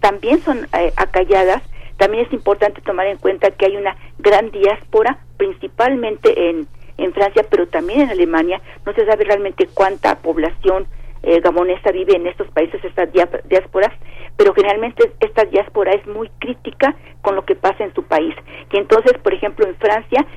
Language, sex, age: Spanish, female, 40-59